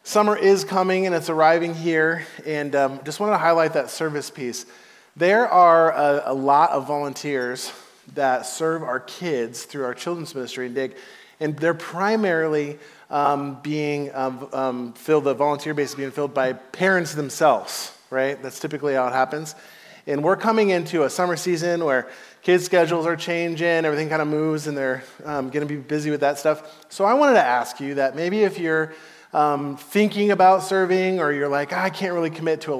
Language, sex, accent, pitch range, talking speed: English, male, American, 135-165 Hz, 195 wpm